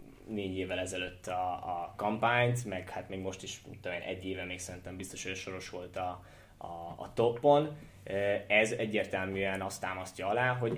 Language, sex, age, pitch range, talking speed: Hungarian, male, 20-39, 95-115 Hz, 175 wpm